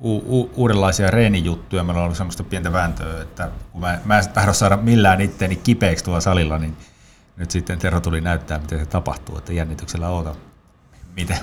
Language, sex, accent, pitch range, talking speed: Finnish, male, native, 85-110 Hz, 185 wpm